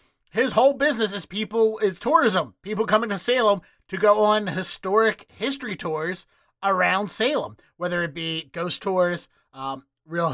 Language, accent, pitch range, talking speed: English, American, 165-205 Hz, 150 wpm